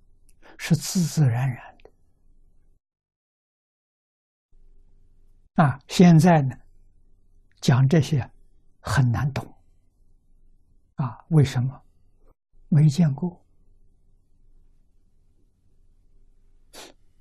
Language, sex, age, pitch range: Chinese, male, 60-79, 90-140 Hz